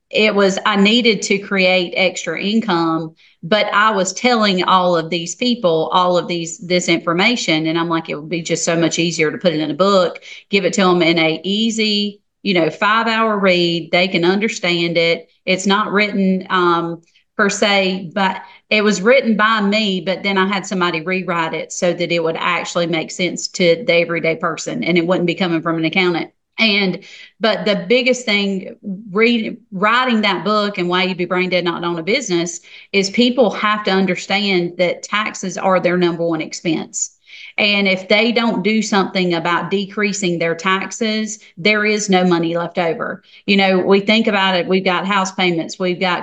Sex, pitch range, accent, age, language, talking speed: female, 170-205 Hz, American, 40-59, English, 195 wpm